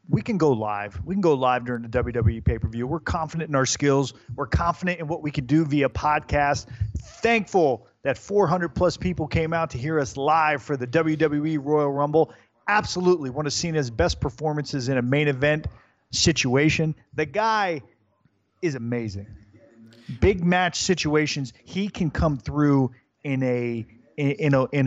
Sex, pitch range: male, 120-155 Hz